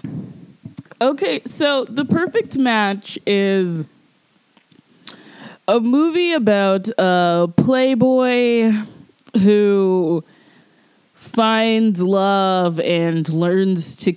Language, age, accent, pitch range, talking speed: English, 20-39, American, 180-230 Hz, 70 wpm